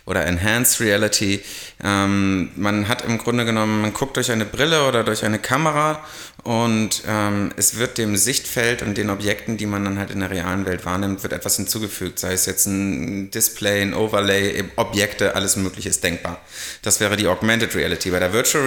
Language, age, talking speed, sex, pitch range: German, 30-49, 190 wpm, male, 100-115 Hz